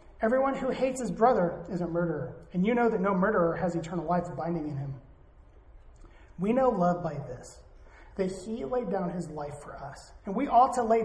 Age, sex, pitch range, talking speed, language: 30-49, male, 170-220 Hz, 205 wpm, English